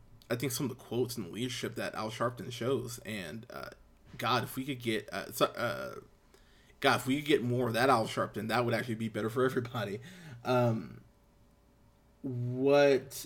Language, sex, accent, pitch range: English, male, American, 115-130 Hz